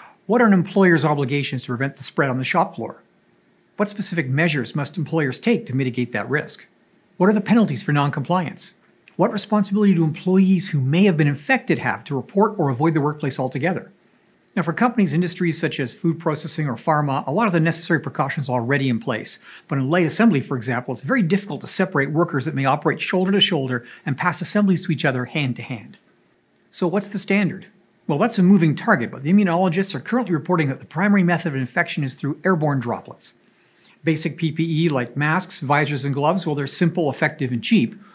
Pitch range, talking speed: 140-190 Hz, 205 wpm